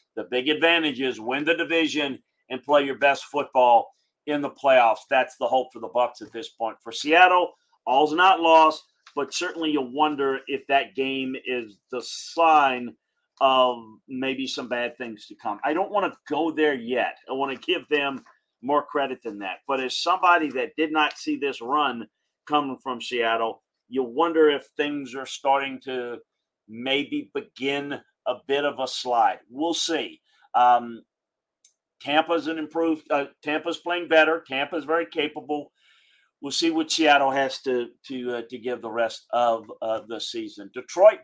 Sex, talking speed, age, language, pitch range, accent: male, 175 wpm, 40-59, English, 130-155 Hz, American